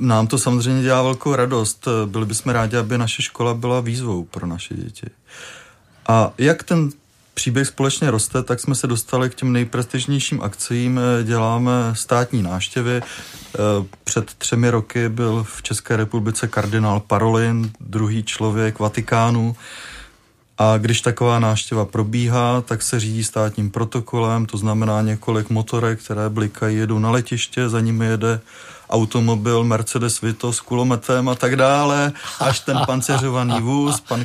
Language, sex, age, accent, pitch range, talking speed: Czech, male, 30-49, native, 110-125 Hz, 140 wpm